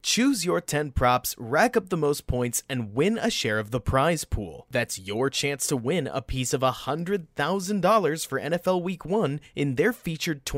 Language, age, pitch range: English, 30-49, 125-170 Hz